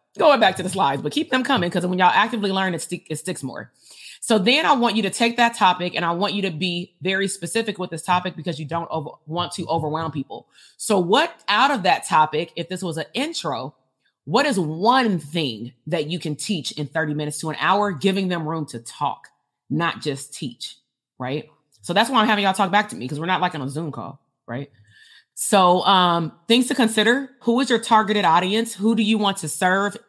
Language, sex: English, female